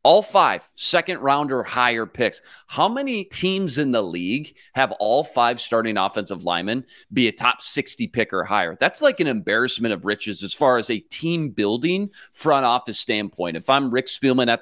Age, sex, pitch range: 30-49, male, 110-140 Hz